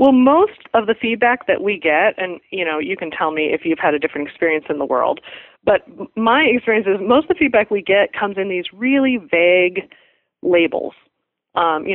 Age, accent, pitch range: 30-49, American, 175-225 Hz